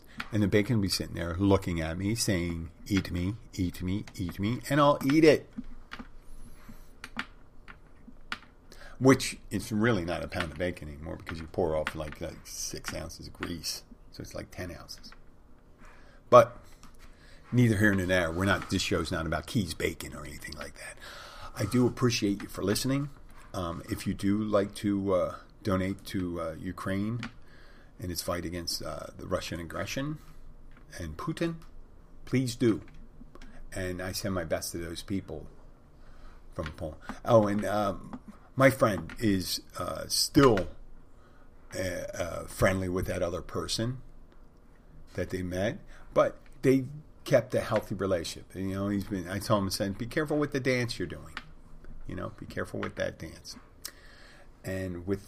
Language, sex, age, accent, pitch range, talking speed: English, male, 40-59, American, 85-115 Hz, 165 wpm